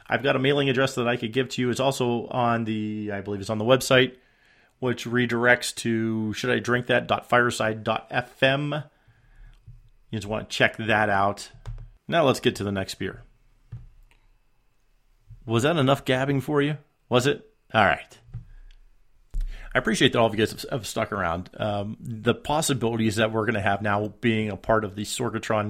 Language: English